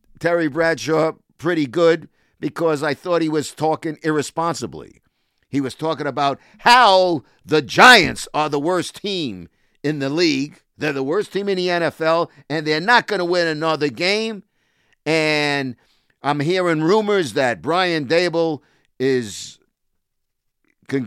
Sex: male